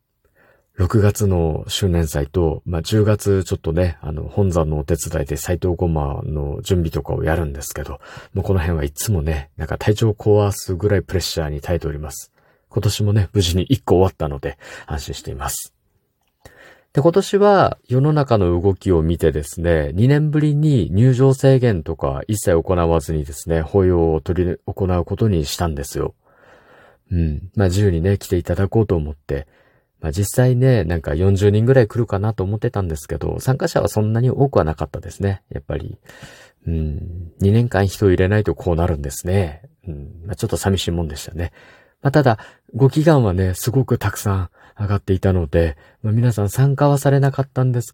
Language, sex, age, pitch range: Japanese, male, 40-59, 85-110 Hz